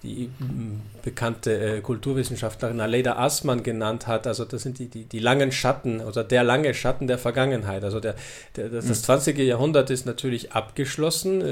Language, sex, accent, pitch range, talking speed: German, male, German, 110-140 Hz, 160 wpm